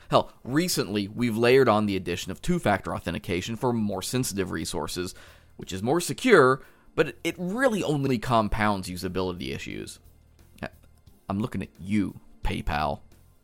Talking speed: 135 wpm